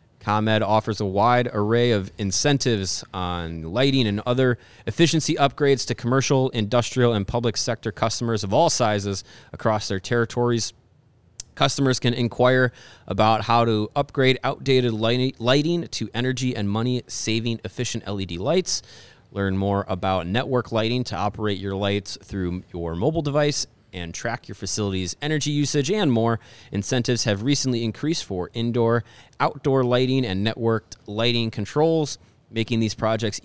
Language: English